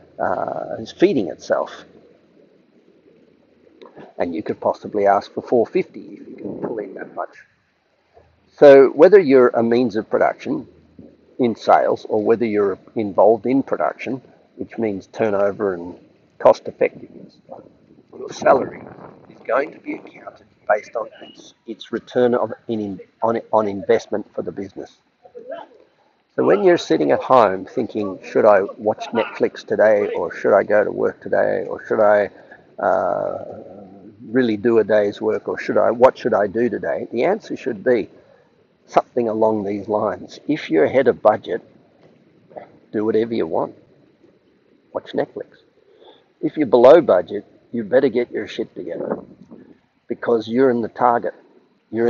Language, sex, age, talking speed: English, male, 50-69, 150 wpm